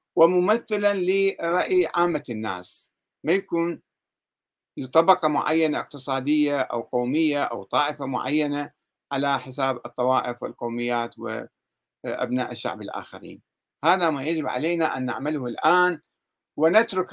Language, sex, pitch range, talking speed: Arabic, male, 135-180 Hz, 100 wpm